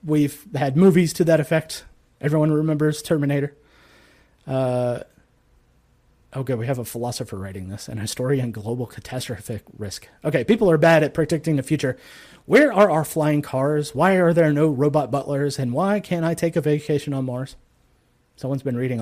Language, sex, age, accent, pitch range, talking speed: English, male, 30-49, American, 125-160 Hz, 165 wpm